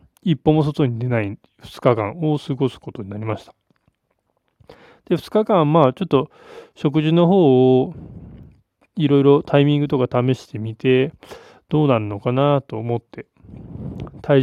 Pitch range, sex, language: 120-150 Hz, male, Japanese